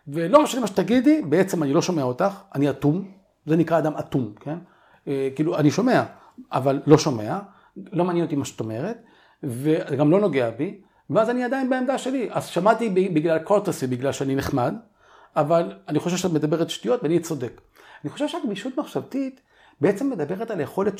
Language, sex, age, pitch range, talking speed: Hebrew, male, 50-69, 145-220 Hz, 170 wpm